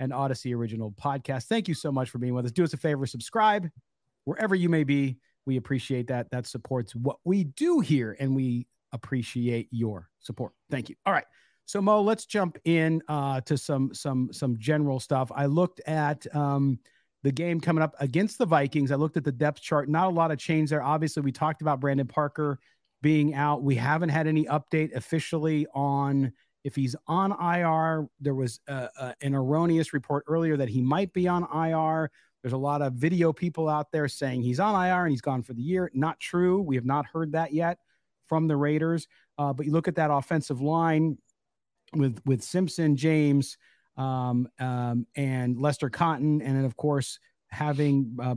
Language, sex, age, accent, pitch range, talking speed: English, male, 40-59, American, 130-160 Hz, 195 wpm